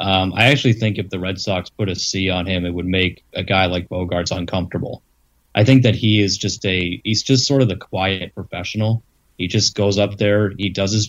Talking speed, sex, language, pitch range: 235 wpm, male, English, 90-105 Hz